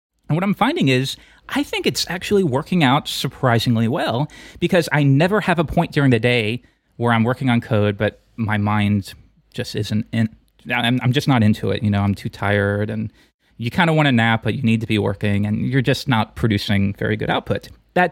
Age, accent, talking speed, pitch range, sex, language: 30-49, American, 215 wpm, 110-150 Hz, male, English